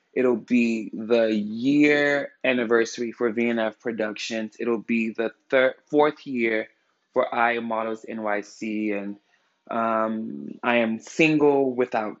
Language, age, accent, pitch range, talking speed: English, 20-39, American, 110-130 Hz, 120 wpm